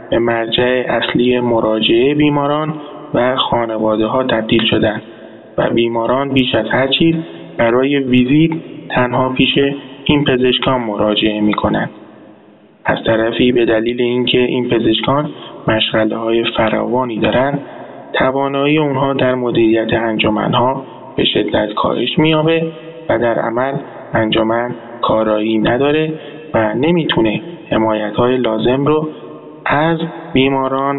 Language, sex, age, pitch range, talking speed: Persian, male, 20-39, 115-140 Hz, 115 wpm